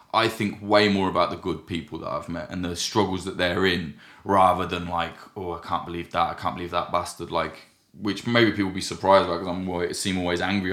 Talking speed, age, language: 240 wpm, 20-39, English